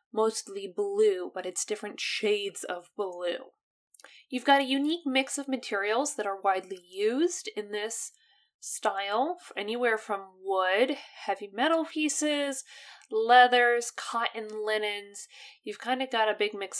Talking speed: 135 wpm